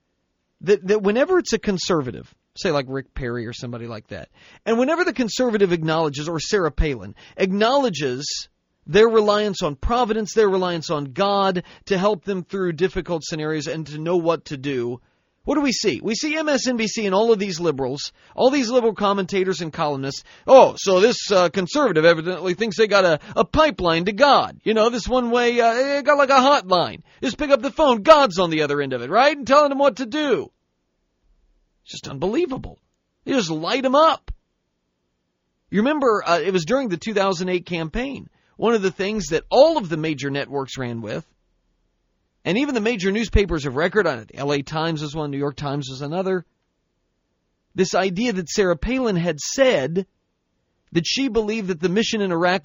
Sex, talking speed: male, 190 wpm